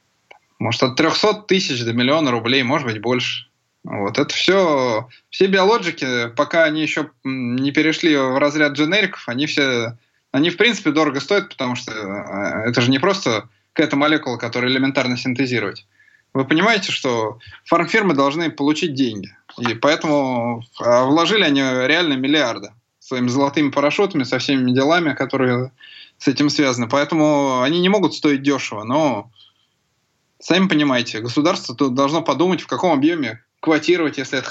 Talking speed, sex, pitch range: 145 wpm, male, 125-160 Hz